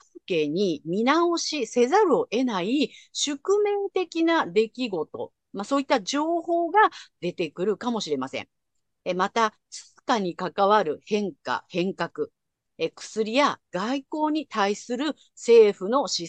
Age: 50-69